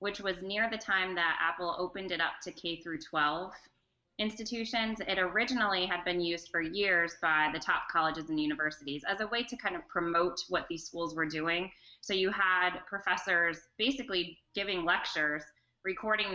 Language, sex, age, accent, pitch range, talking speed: English, female, 20-39, American, 165-195 Hz, 175 wpm